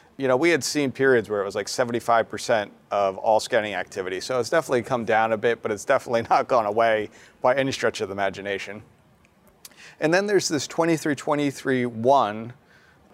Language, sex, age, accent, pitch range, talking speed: English, male, 40-59, American, 115-155 Hz, 180 wpm